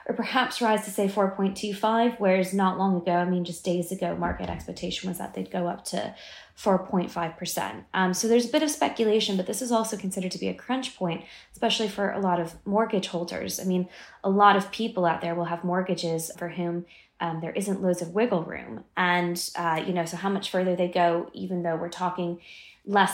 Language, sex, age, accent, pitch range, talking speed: English, female, 20-39, American, 175-195 Hz, 215 wpm